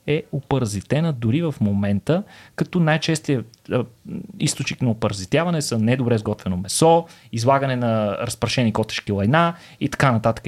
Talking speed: 125 wpm